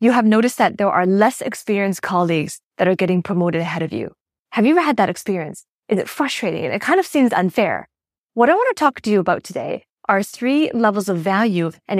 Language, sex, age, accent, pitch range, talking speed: English, female, 20-39, American, 180-230 Hz, 225 wpm